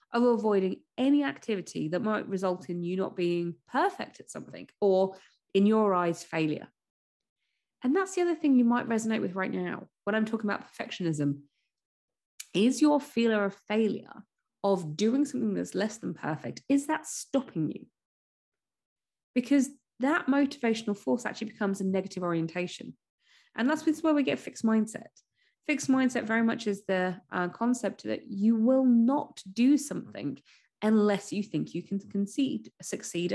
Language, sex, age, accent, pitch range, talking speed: English, female, 20-39, British, 190-270 Hz, 160 wpm